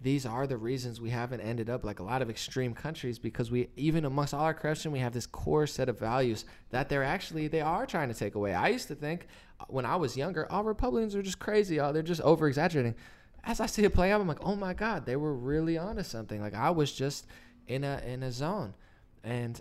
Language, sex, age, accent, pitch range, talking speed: English, male, 20-39, American, 125-165 Hz, 255 wpm